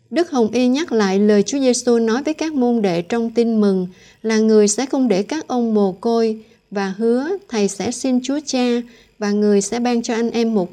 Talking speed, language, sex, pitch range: 225 wpm, Vietnamese, female, 200-245 Hz